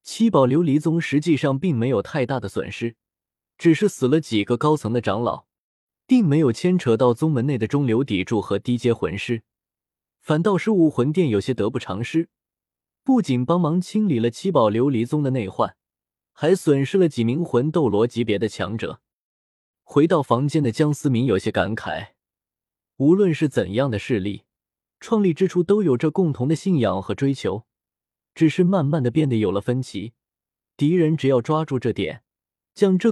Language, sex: Chinese, male